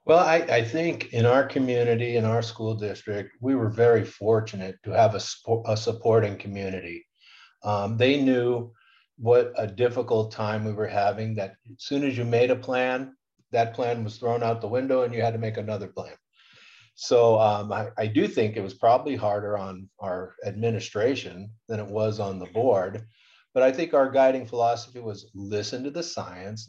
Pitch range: 105-120 Hz